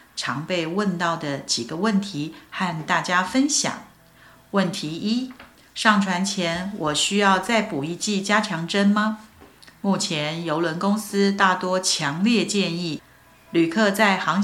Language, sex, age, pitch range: Chinese, female, 50-69, 165-205 Hz